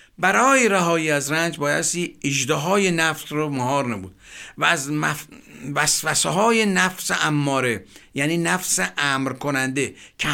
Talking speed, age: 135 wpm, 50-69